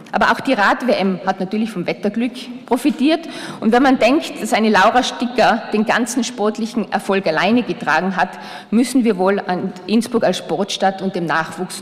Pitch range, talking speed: 185-230 Hz, 175 wpm